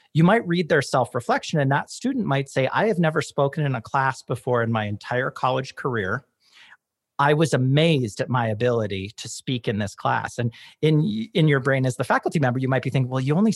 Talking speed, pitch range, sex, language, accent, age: 220 wpm, 125-165 Hz, male, English, American, 40-59